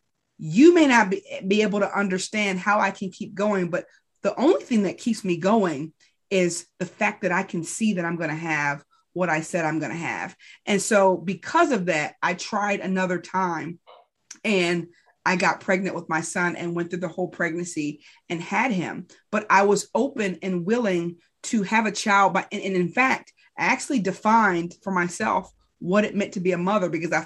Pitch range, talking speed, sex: 175-210 Hz, 200 wpm, female